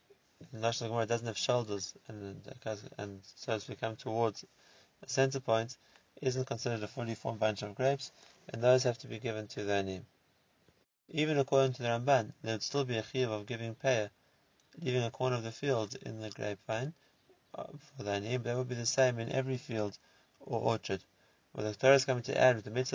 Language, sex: English, male